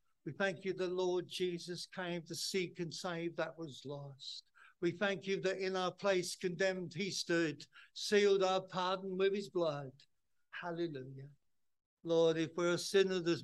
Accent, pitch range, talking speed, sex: British, 150-185 Hz, 165 wpm, male